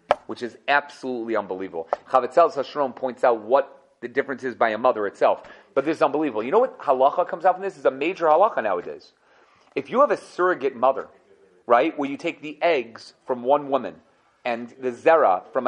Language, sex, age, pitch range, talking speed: English, male, 30-49, 135-205 Hz, 200 wpm